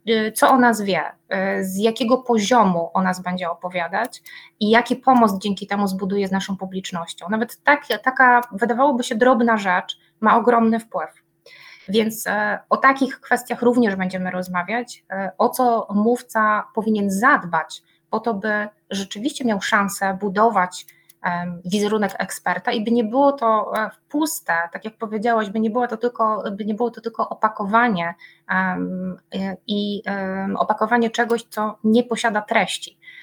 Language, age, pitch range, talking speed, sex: Polish, 20-39, 195-240 Hz, 135 wpm, female